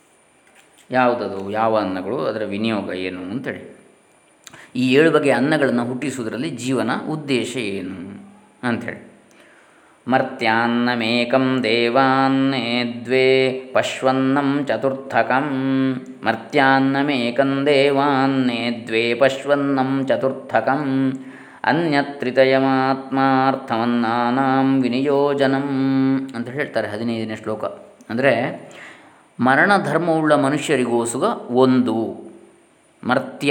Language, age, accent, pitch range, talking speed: Kannada, 20-39, native, 120-145 Hz, 65 wpm